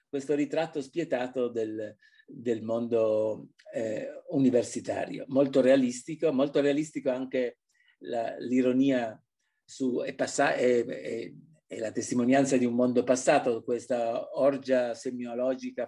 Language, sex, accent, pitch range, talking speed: Italian, male, native, 120-155 Hz, 95 wpm